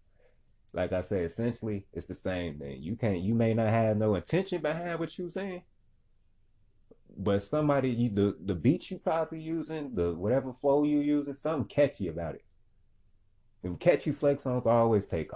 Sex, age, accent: male, 20-39, American